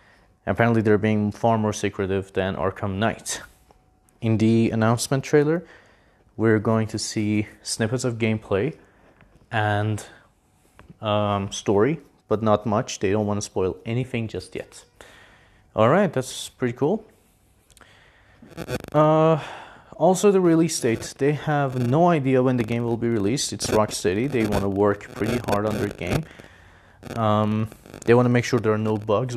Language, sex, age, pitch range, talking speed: English, male, 30-49, 105-130 Hz, 155 wpm